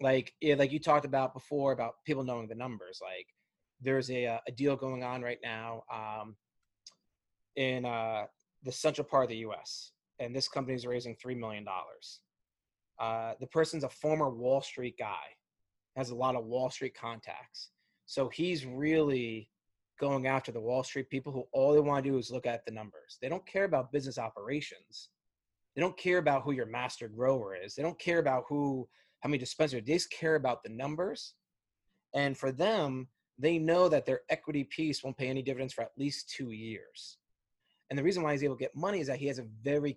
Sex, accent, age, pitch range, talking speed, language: male, American, 30-49, 120-145 Hz, 200 wpm, English